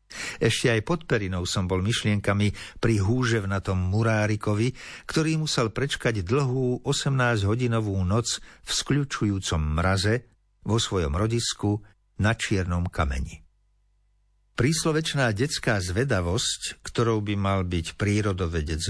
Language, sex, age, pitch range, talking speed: Slovak, male, 60-79, 90-120 Hz, 105 wpm